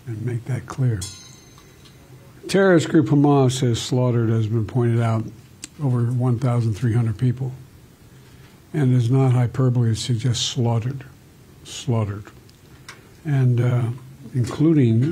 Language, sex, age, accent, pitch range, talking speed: English, male, 60-79, American, 120-135 Hz, 110 wpm